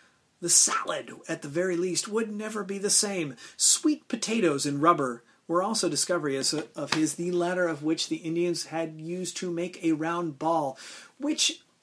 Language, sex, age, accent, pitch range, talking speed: English, male, 30-49, American, 155-195 Hz, 170 wpm